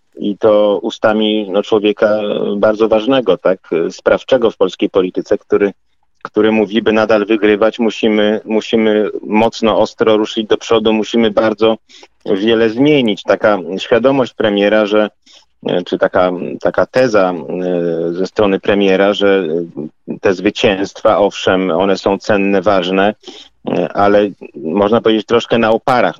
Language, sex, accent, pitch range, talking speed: Polish, male, native, 95-110 Hz, 125 wpm